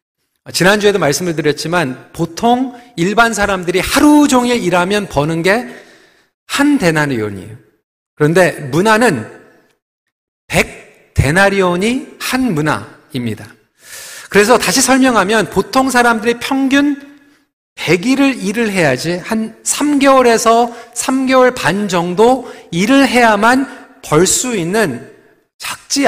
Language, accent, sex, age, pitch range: Korean, native, male, 40-59, 175-270 Hz